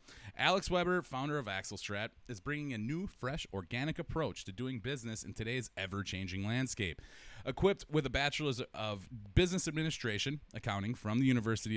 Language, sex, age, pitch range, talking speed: English, male, 30-49, 105-145 Hz, 155 wpm